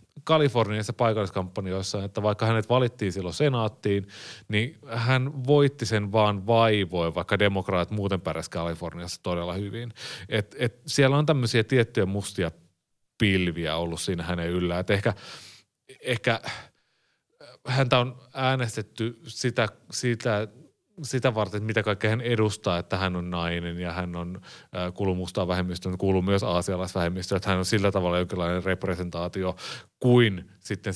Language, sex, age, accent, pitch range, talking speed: Finnish, male, 30-49, native, 90-110 Hz, 130 wpm